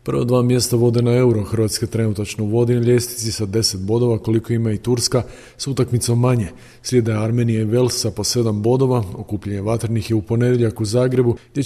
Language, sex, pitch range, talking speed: Croatian, male, 110-120 Hz, 185 wpm